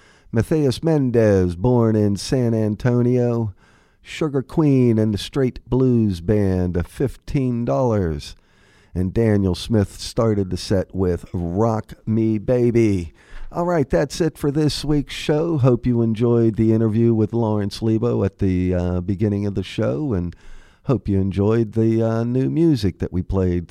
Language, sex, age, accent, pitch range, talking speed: English, male, 50-69, American, 95-125 Hz, 145 wpm